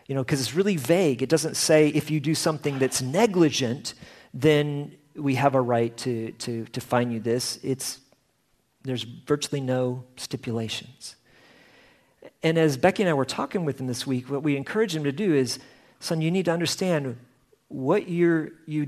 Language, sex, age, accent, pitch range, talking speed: English, male, 40-59, American, 125-155 Hz, 180 wpm